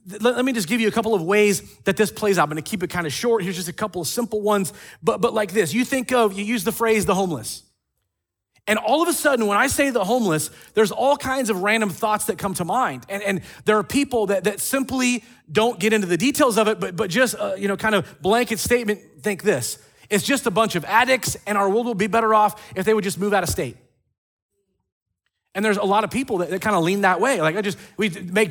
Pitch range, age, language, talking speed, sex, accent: 185-225 Hz, 30-49, English, 265 wpm, male, American